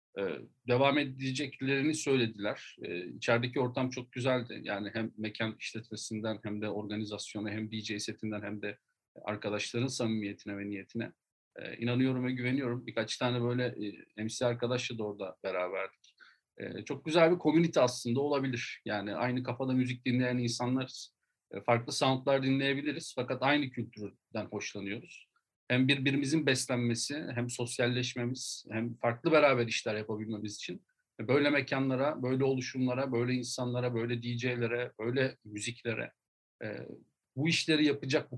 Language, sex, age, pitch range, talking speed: Turkish, male, 40-59, 115-130 Hz, 130 wpm